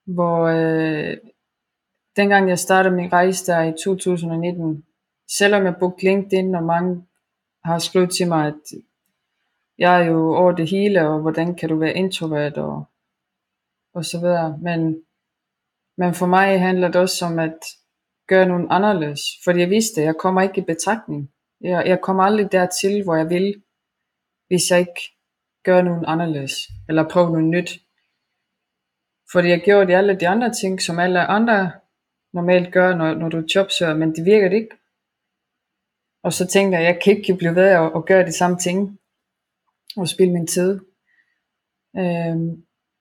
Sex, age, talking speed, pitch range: female, 20-39, 165 wpm, 165-190 Hz